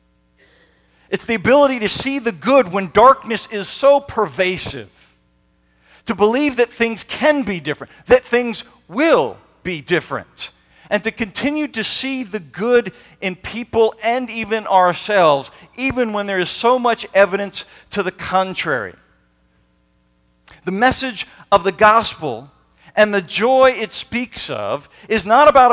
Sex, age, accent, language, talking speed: male, 40-59, American, English, 140 wpm